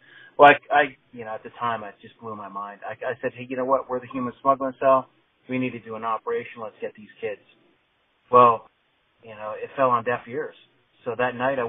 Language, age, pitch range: English, 30-49, 120-150 Hz